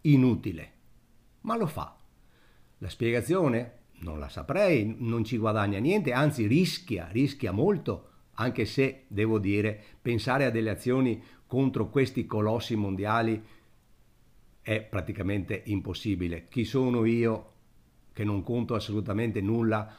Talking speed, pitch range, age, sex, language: 120 wpm, 100-120 Hz, 50-69, male, Italian